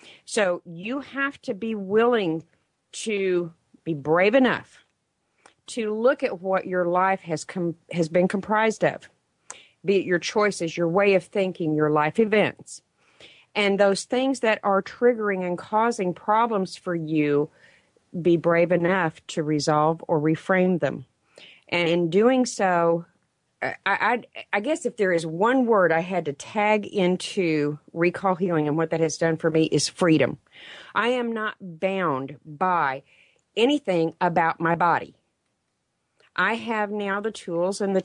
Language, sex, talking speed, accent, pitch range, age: English, female, 155 wpm, American, 165-210 Hz, 40-59